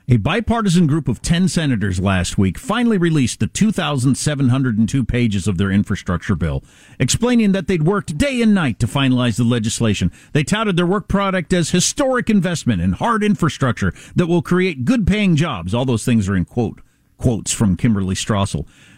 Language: English